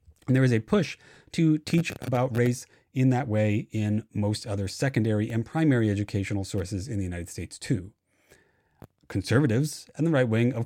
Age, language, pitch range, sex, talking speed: 30-49, English, 100-130 Hz, male, 175 wpm